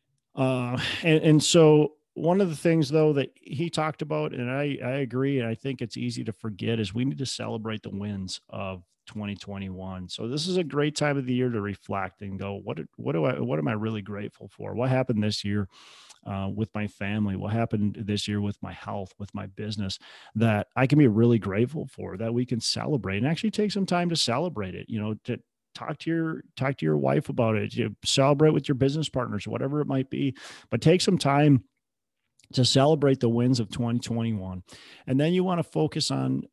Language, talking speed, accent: English, 220 wpm, American